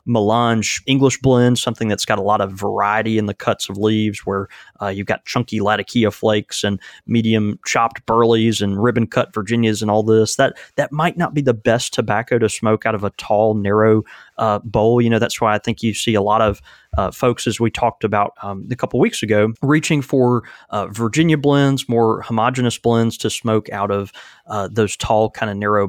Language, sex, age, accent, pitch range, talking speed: English, male, 20-39, American, 105-120 Hz, 210 wpm